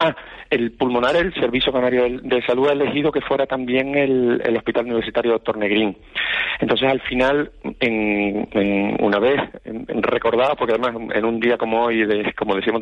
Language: Spanish